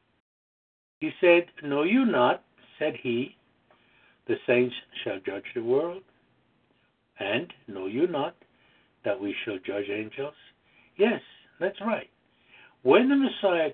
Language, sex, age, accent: English, male, 60-79, American